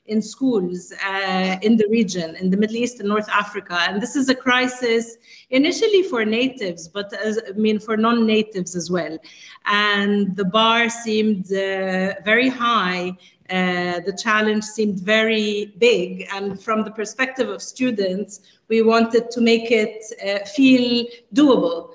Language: English